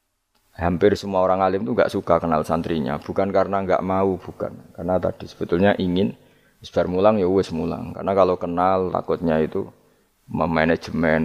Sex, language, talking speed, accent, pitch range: male, Indonesian, 150 wpm, native, 85-95 Hz